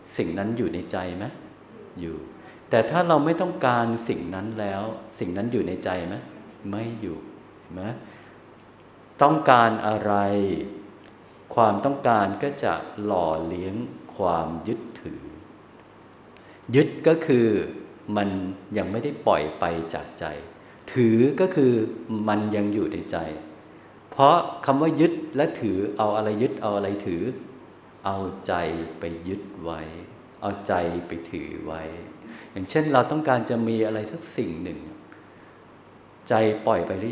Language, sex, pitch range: Thai, male, 95-120 Hz